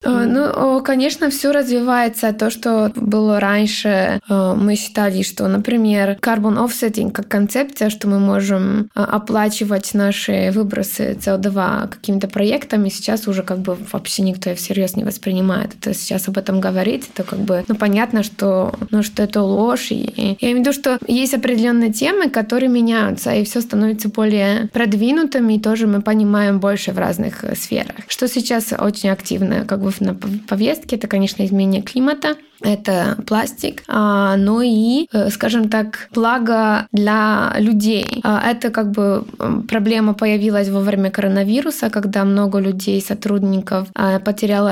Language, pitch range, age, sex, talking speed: Russian, 200-230 Hz, 20-39, female, 145 wpm